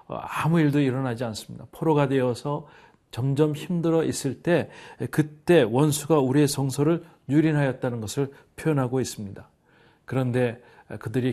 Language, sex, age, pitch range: Korean, male, 40-59, 120-145 Hz